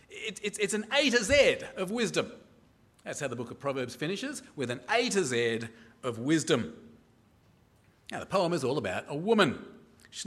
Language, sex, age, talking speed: English, male, 40-59, 175 wpm